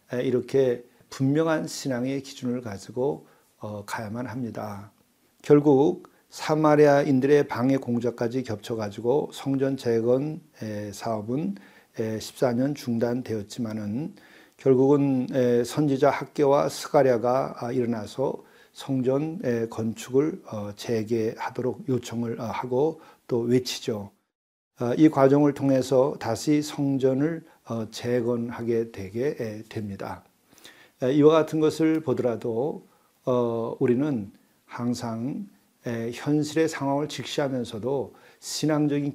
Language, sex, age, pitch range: Korean, male, 40-59, 115-140 Hz